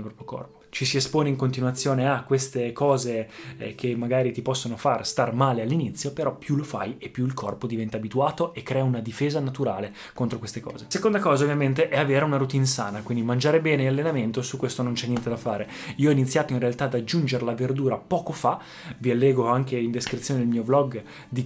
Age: 20-39